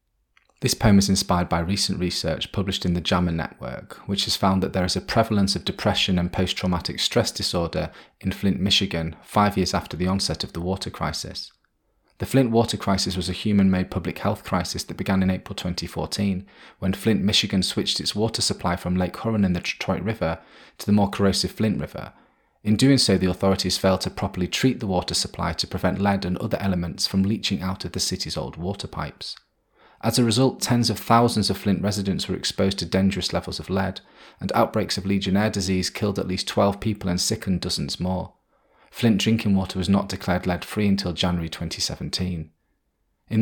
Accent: British